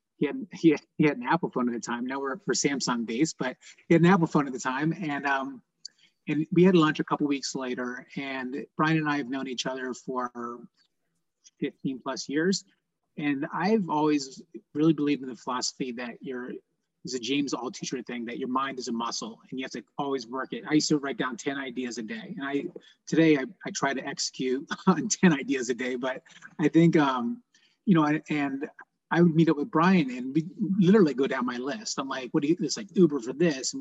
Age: 30-49